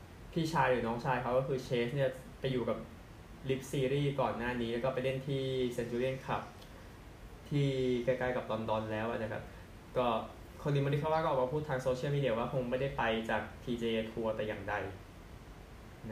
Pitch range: 110-130 Hz